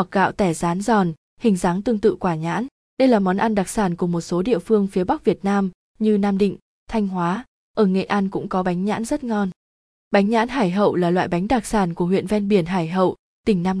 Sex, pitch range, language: female, 185-225 Hz, Vietnamese